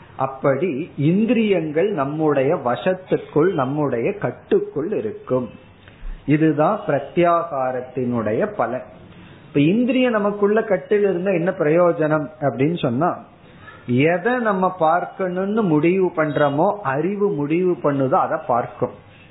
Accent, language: native, Tamil